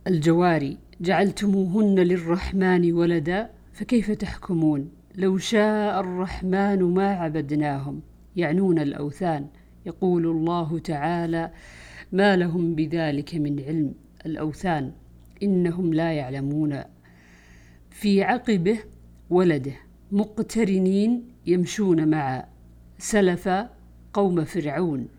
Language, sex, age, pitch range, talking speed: Arabic, female, 50-69, 150-190 Hz, 80 wpm